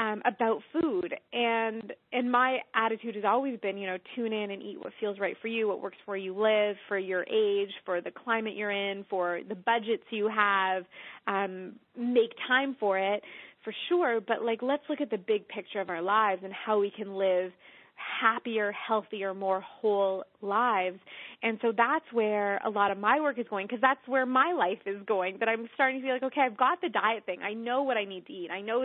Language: English